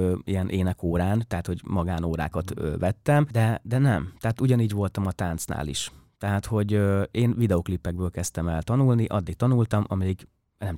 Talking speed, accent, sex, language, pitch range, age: 145 wpm, Finnish, male, English, 85-105 Hz, 30-49